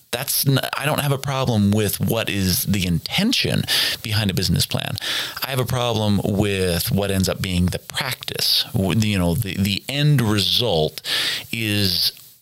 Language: English